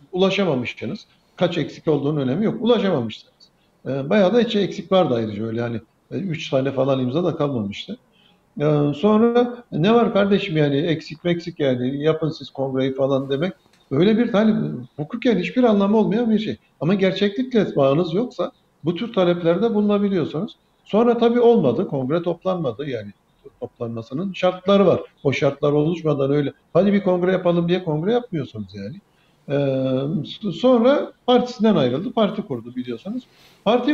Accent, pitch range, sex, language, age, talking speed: native, 125-200 Hz, male, Turkish, 60-79, 145 wpm